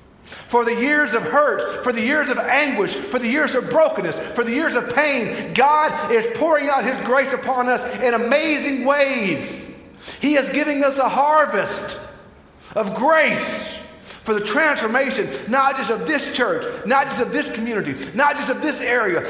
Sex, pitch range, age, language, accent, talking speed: male, 210-275 Hz, 50-69, English, American, 175 wpm